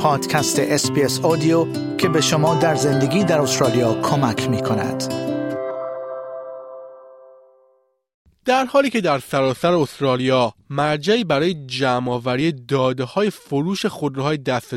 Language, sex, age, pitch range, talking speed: Persian, male, 30-49, 130-190 Hz, 105 wpm